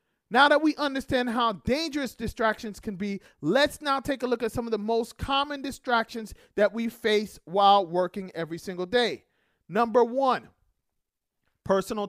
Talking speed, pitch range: 160 wpm, 215-265 Hz